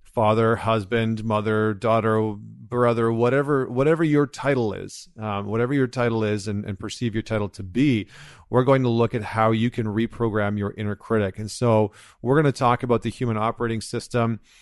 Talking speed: 185 wpm